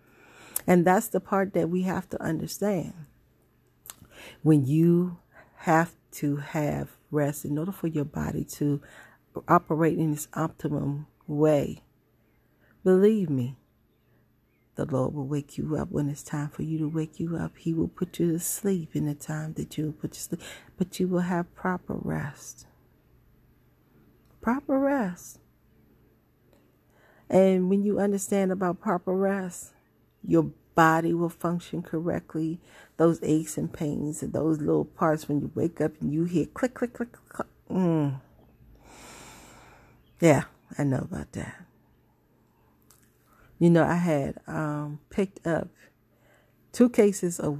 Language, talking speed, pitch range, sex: English, 140 wpm, 150-185 Hz, female